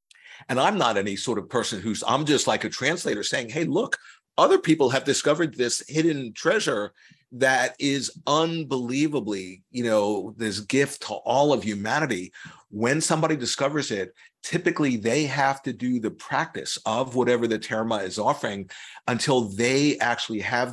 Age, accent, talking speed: 50-69, American, 160 wpm